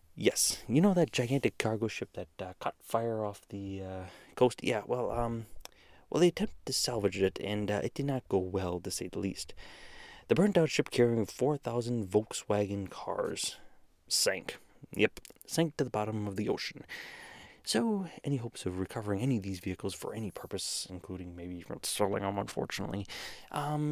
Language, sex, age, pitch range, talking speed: English, male, 30-49, 95-120 Hz, 175 wpm